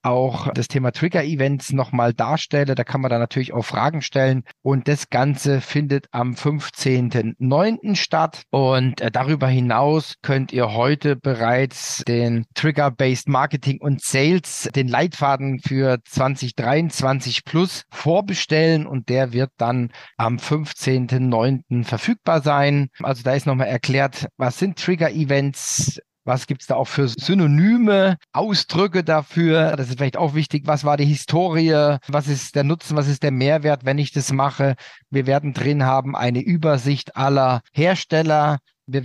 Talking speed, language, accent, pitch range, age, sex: 145 wpm, German, German, 130-155 Hz, 40-59, male